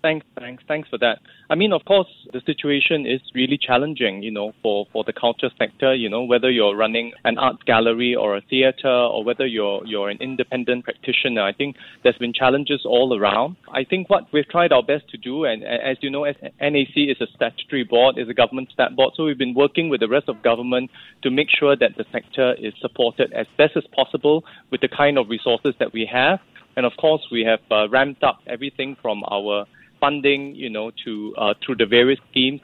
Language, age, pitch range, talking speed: English, 20-39, 120-145 Hz, 220 wpm